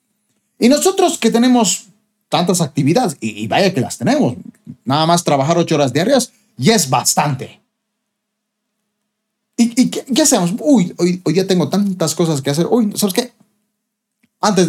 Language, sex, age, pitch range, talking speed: Spanish, male, 30-49, 150-215 Hz, 150 wpm